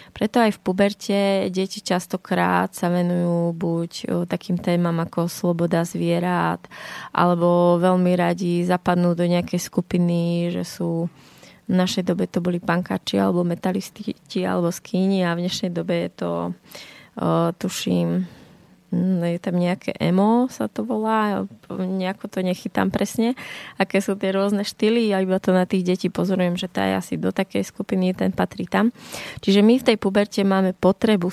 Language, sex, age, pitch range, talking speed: Slovak, female, 20-39, 180-195 Hz, 155 wpm